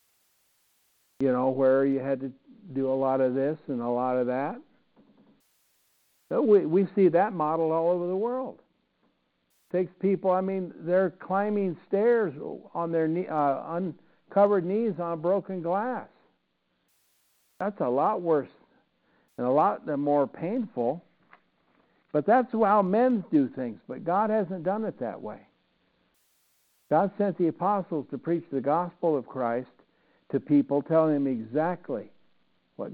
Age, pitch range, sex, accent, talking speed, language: 60-79, 135-185 Hz, male, American, 150 wpm, English